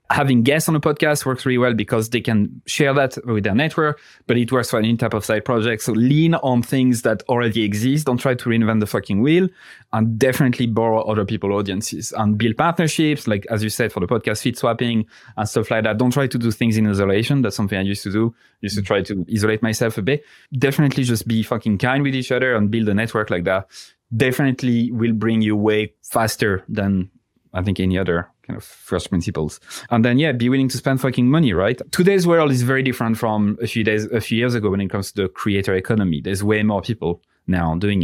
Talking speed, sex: 230 wpm, male